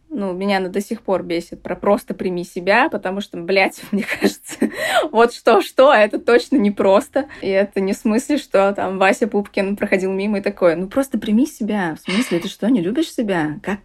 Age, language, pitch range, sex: 20-39, Russian, 195-260 Hz, female